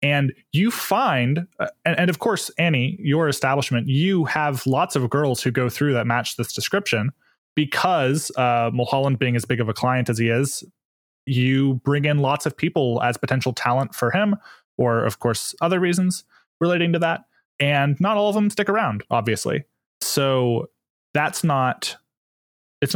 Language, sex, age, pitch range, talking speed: English, male, 20-39, 120-150 Hz, 165 wpm